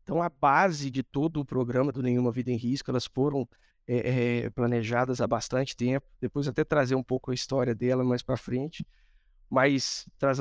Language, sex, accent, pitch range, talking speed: Portuguese, male, Brazilian, 135-180 Hz, 190 wpm